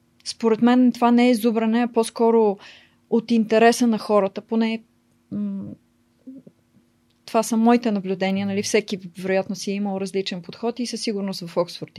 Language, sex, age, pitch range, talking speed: Bulgarian, female, 30-49, 195-235 Hz, 145 wpm